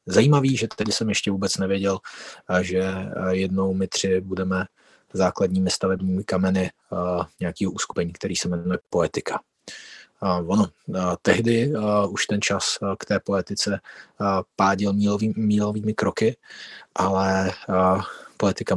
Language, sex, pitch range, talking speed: Czech, male, 95-115 Hz, 110 wpm